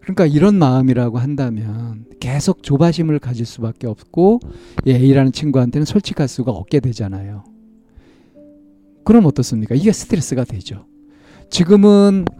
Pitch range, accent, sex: 110-155 Hz, native, male